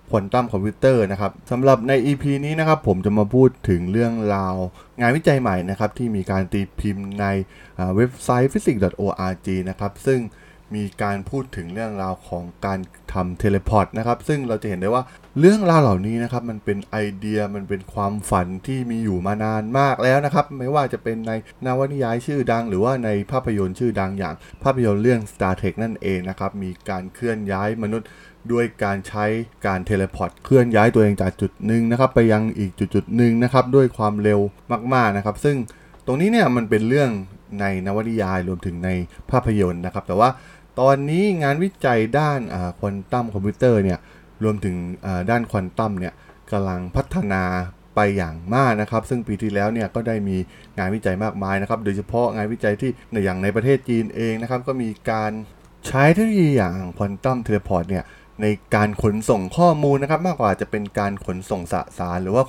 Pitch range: 95-125 Hz